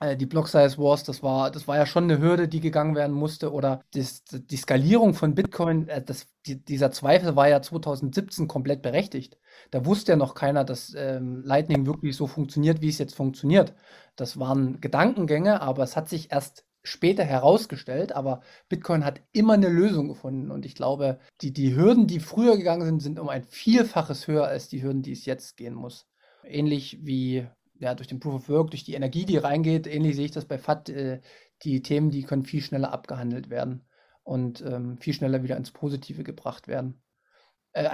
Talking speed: 190 wpm